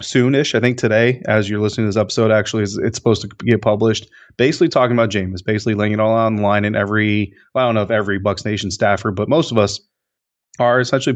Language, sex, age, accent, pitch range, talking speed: English, male, 30-49, American, 105-125 Hz, 225 wpm